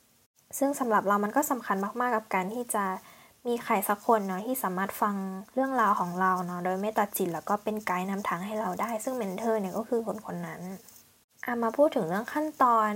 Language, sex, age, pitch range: Thai, female, 10-29, 200-245 Hz